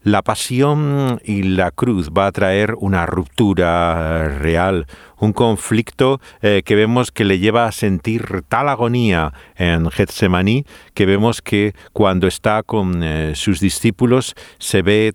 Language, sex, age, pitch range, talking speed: Spanish, male, 50-69, 90-110 Hz, 135 wpm